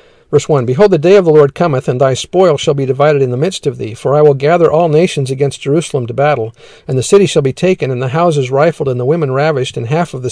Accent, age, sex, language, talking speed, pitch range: American, 50-69, male, English, 280 wpm, 130-160 Hz